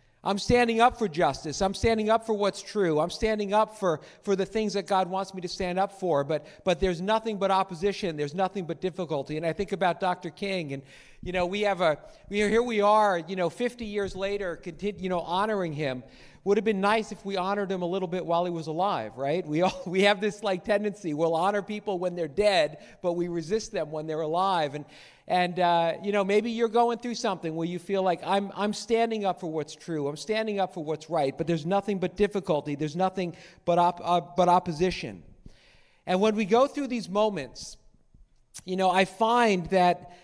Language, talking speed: English, 225 wpm